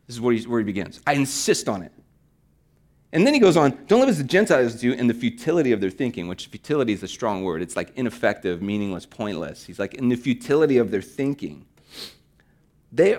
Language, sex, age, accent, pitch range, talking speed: English, male, 30-49, American, 125-195 Hz, 210 wpm